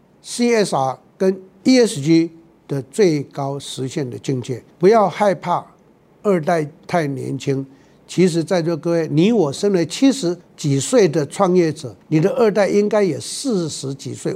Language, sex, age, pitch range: Chinese, male, 60-79, 145-190 Hz